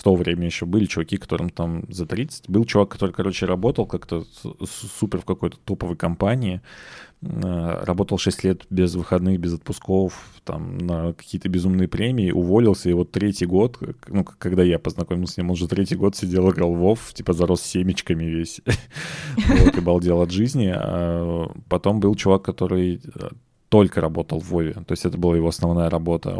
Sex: male